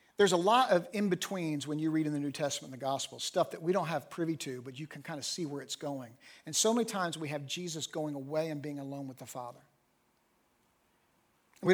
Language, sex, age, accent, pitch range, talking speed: English, male, 50-69, American, 145-185 Hz, 240 wpm